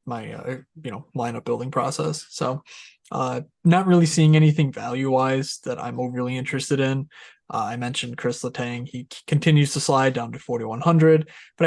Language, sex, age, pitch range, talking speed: English, male, 20-39, 125-155 Hz, 165 wpm